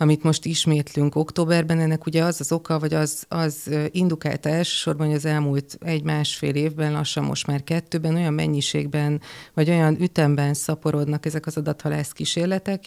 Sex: female